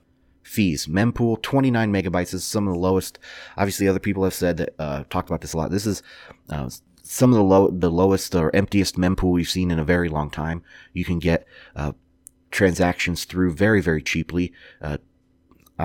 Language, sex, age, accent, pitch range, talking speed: English, male, 30-49, American, 85-100 Hz, 190 wpm